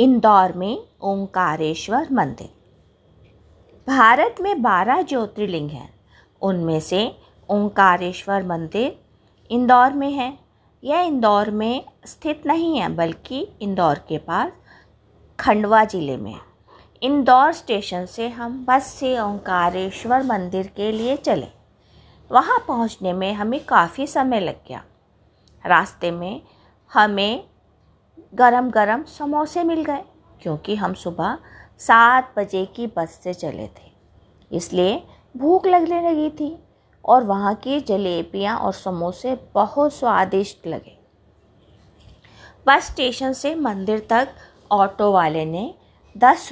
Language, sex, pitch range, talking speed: Hindi, female, 170-260 Hz, 115 wpm